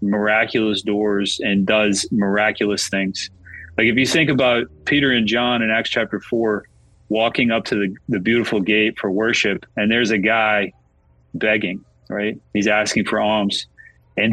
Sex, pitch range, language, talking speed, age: male, 105-120 Hz, English, 160 wpm, 30-49